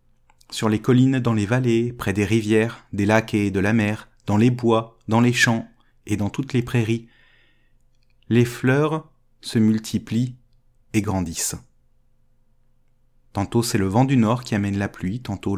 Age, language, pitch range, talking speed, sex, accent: 30-49, French, 105-125 Hz, 165 wpm, male, French